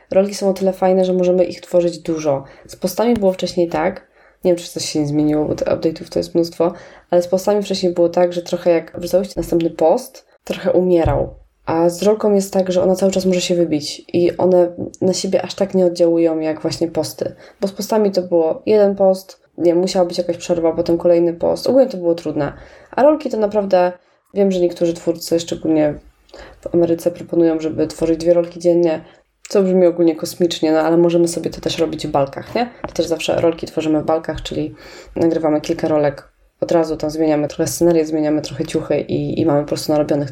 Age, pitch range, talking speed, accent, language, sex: 20-39, 165-185 Hz, 210 wpm, native, Polish, female